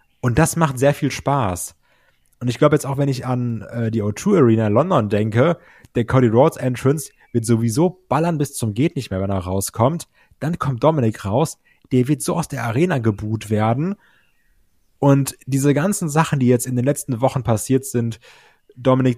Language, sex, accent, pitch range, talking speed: German, male, German, 115-145 Hz, 190 wpm